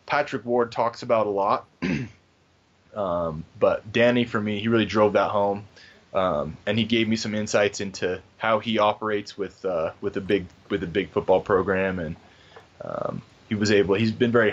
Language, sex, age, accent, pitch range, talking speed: English, male, 20-39, American, 100-120 Hz, 185 wpm